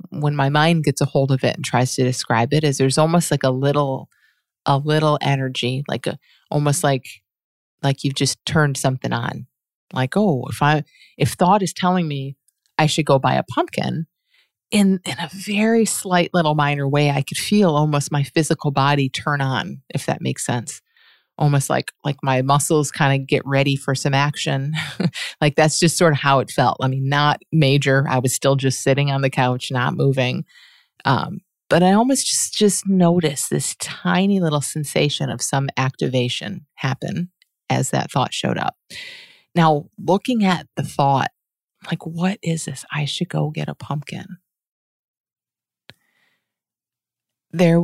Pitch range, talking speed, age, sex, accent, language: 135-170 Hz, 175 wpm, 30-49, female, American, English